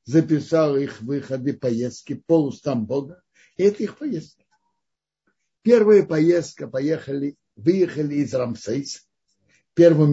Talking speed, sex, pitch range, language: 105 wpm, male, 130-165 Hz, Russian